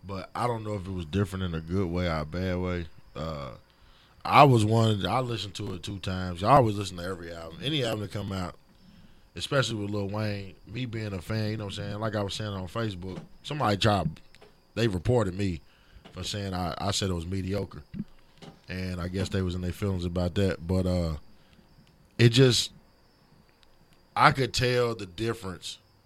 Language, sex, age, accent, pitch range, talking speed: English, male, 20-39, American, 90-115 Hz, 205 wpm